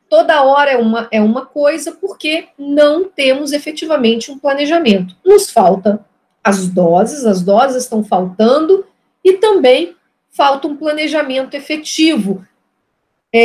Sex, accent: female, Brazilian